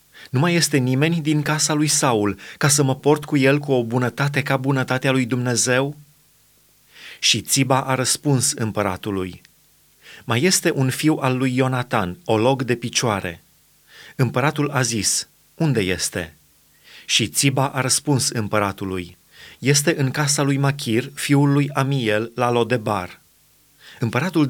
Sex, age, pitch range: male, 30-49, 115-145 Hz